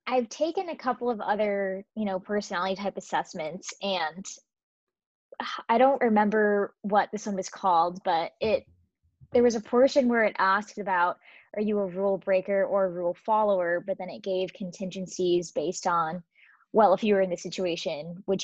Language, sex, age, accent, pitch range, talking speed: English, female, 20-39, American, 180-210 Hz, 175 wpm